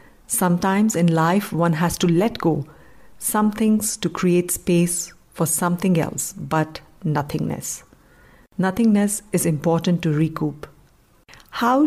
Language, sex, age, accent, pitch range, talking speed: English, female, 50-69, Indian, 165-195 Hz, 120 wpm